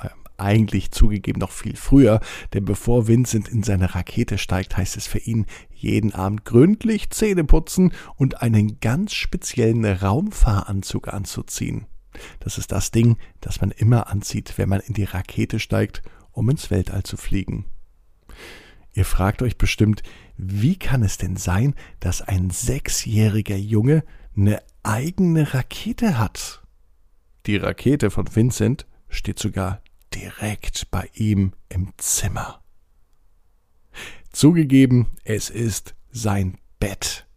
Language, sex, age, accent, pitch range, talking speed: German, male, 50-69, German, 100-125 Hz, 125 wpm